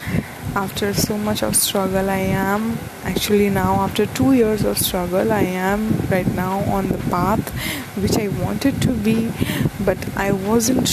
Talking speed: 160 wpm